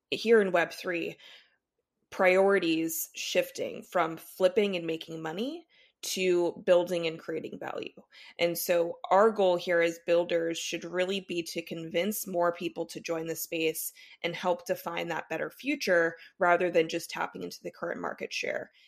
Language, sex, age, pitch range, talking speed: English, female, 20-39, 165-185 Hz, 155 wpm